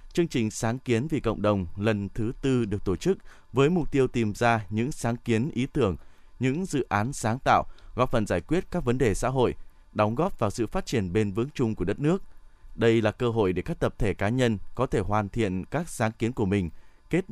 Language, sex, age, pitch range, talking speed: Vietnamese, male, 20-39, 100-125 Hz, 240 wpm